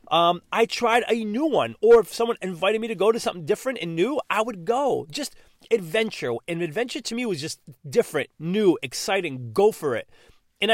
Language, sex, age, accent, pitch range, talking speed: English, male, 30-49, American, 160-230 Hz, 200 wpm